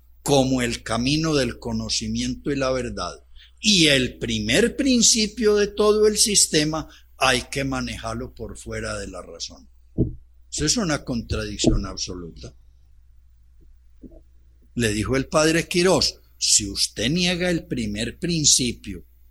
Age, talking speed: 60-79, 125 wpm